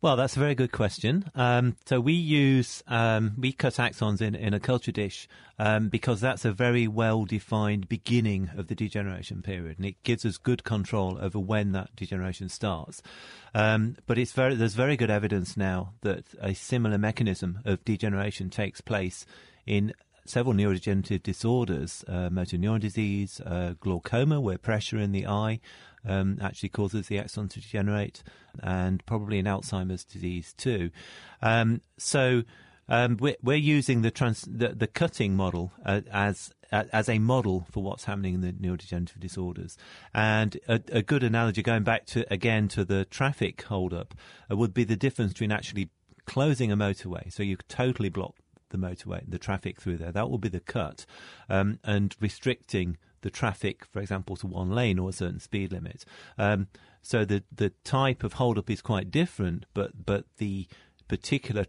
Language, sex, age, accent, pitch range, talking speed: English, male, 30-49, British, 95-115 Hz, 170 wpm